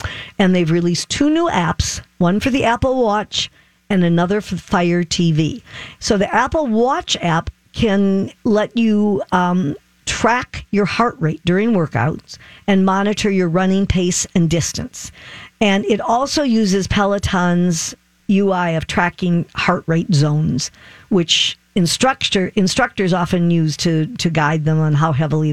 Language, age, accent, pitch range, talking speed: English, 50-69, American, 160-200 Hz, 140 wpm